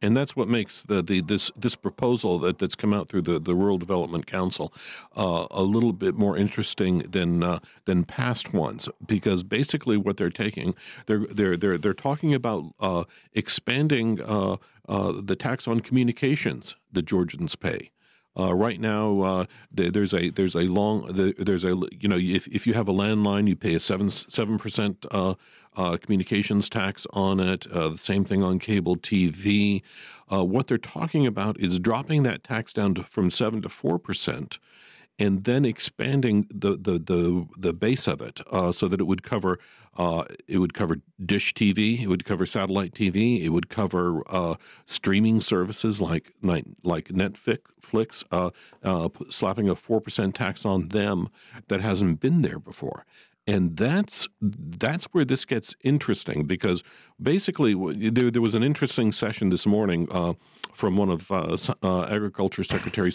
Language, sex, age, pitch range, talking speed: English, male, 50-69, 90-110 Hz, 170 wpm